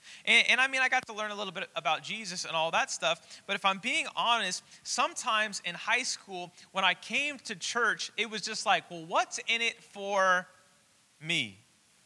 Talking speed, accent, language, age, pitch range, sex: 205 wpm, American, English, 30-49, 165-220 Hz, male